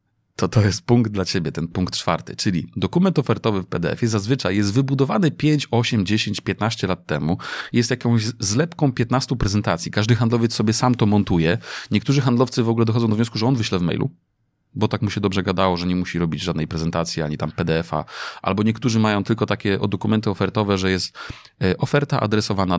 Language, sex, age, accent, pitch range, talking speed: Polish, male, 30-49, native, 95-115 Hz, 190 wpm